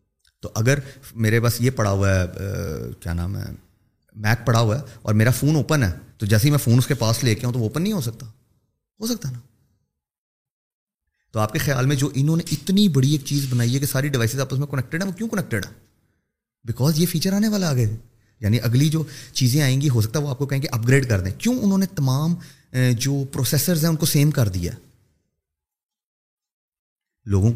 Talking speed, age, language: 220 wpm, 30-49, Urdu